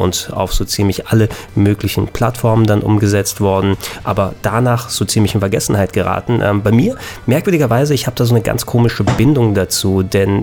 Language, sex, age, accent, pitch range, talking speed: German, male, 30-49, German, 100-115 Hz, 180 wpm